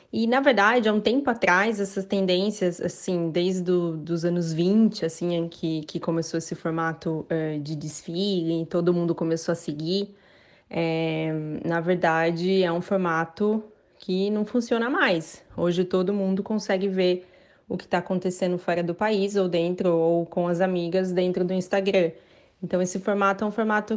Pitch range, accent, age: 175-215 Hz, Brazilian, 20-39